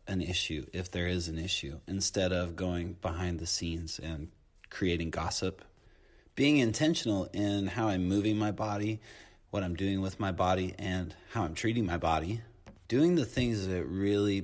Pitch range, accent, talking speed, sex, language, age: 85-95 Hz, American, 170 wpm, male, English, 30-49